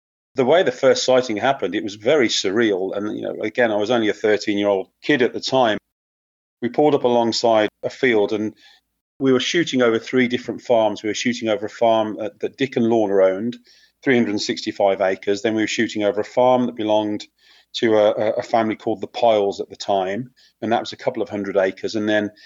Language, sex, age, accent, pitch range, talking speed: English, male, 40-59, British, 105-125 Hz, 210 wpm